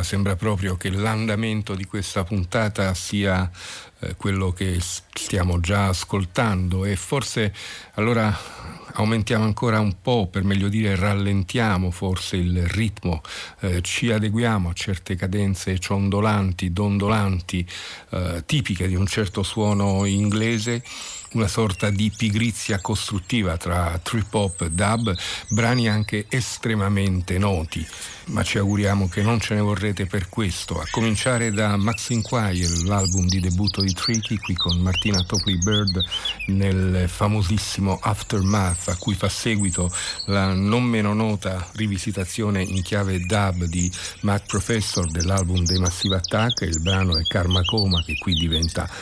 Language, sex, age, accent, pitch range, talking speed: Italian, male, 50-69, native, 95-110 Hz, 135 wpm